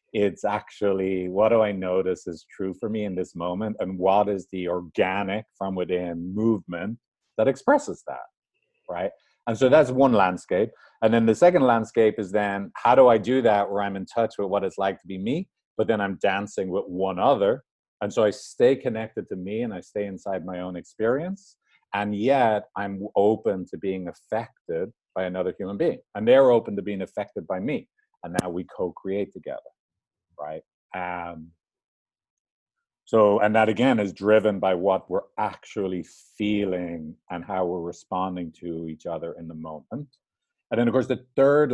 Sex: male